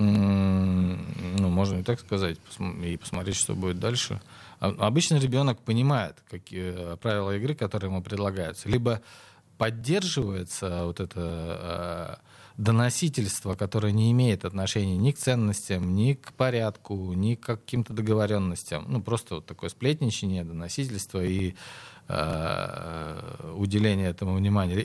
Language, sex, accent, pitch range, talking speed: Russian, male, native, 95-120 Hz, 120 wpm